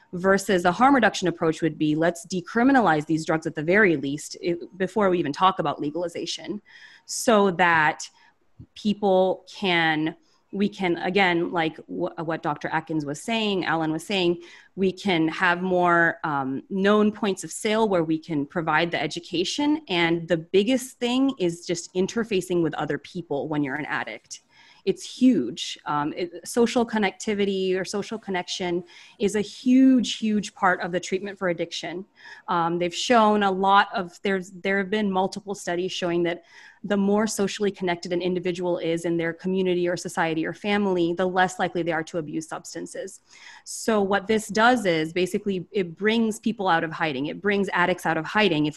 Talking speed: 170 wpm